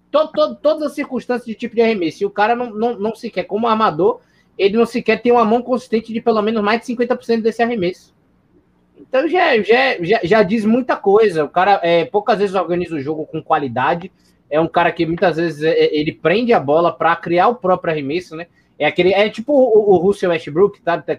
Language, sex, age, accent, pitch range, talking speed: Portuguese, male, 20-39, Brazilian, 160-230 Hz, 230 wpm